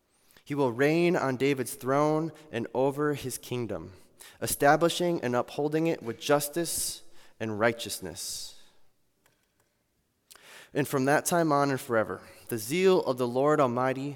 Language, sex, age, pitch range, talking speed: English, male, 20-39, 115-150 Hz, 130 wpm